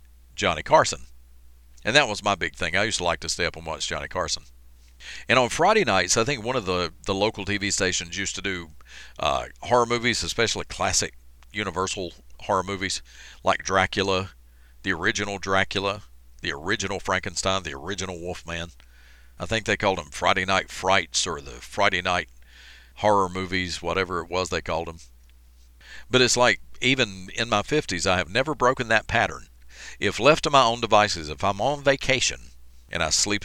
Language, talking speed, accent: English, 180 wpm, American